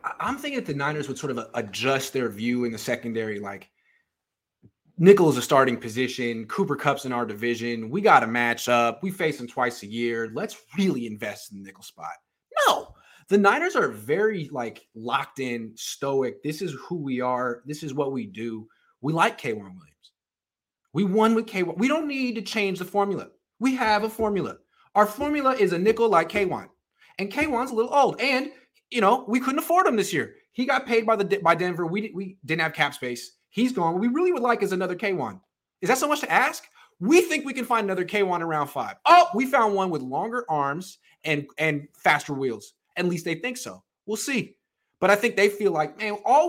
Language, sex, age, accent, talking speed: English, male, 30-49, American, 215 wpm